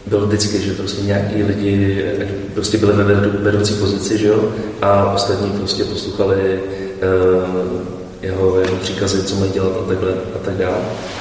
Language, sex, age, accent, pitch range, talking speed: Czech, male, 20-39, native, 100-105 Hz, 155 wpm